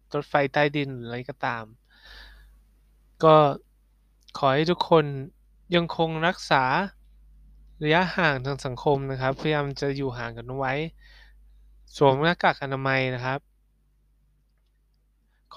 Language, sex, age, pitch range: Thai, male, 20-39, 130-160 Hz